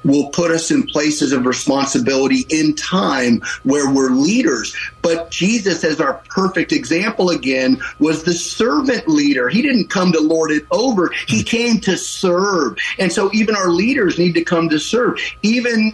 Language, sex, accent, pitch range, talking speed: English, male, American, 150-185 Hz, 170 wpm